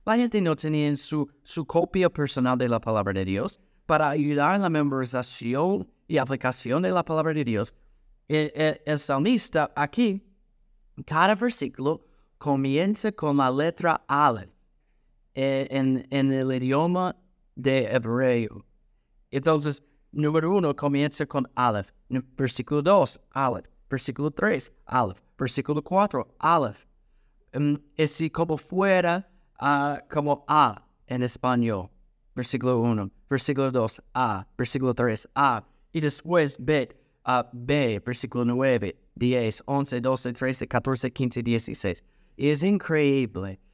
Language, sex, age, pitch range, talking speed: Spanish, male, 30-49, 125-160 Hz, 125 wpm